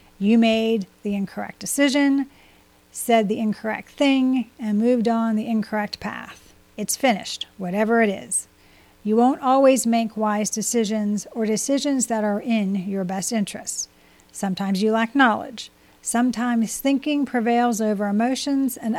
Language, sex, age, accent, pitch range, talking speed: English, female, 40-59, American, 210-255 Hz, 140 wpm